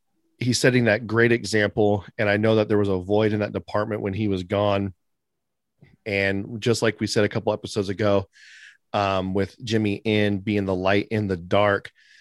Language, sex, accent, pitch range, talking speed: English, male, American, 95-115 Hz, 190 wpm